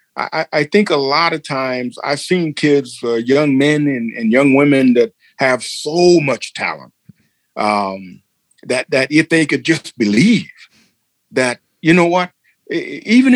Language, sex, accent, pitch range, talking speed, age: English, male, American, 125-170 Hz, 155 wpm, 50-69